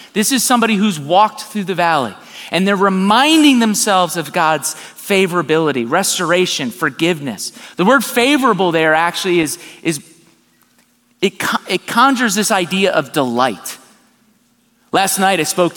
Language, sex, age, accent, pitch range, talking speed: English, male, 30-49, American, 155-230 Hz, 135 wpm